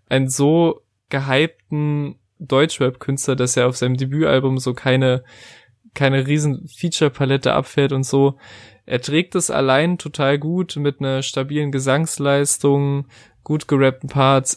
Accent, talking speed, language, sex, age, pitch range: German, 125 wpm, German, male, 20-39, 130-145 Hz